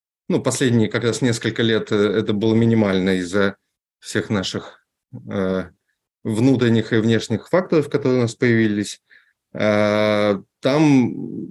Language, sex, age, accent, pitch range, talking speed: Russian, male, 20-39, native, 105-130 Hz, 110 wpm